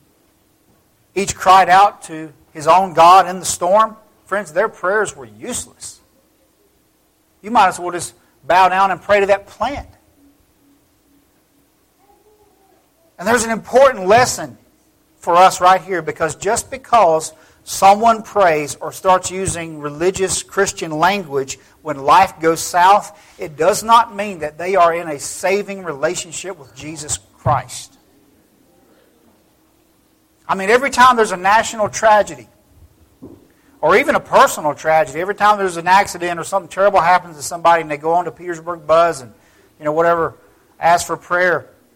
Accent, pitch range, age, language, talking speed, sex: American, 155-200 Hz, 50-69, English, 145 wpm, male